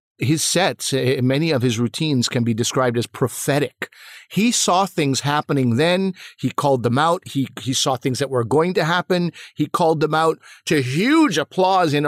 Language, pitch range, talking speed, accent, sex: English, 125-160 Hz, 185 wpm, American, male